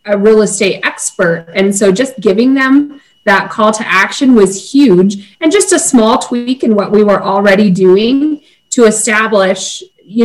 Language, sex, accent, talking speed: English, female, American, 170 wpm